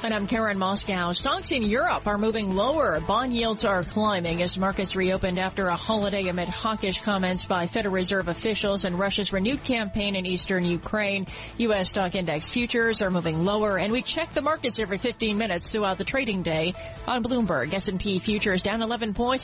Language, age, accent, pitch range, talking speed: English, 40-59, American, 190-230 Hz, 185 wpm